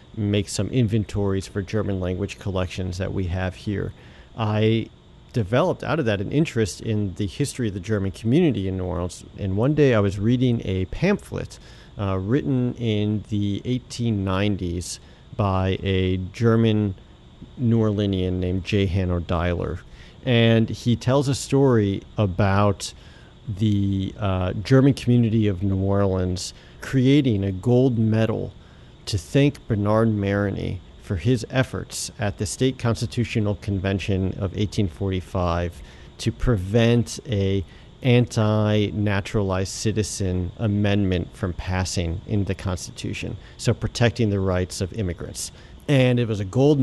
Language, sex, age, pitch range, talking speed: English, male, 40-59, 95-115 Hz, 130 wpm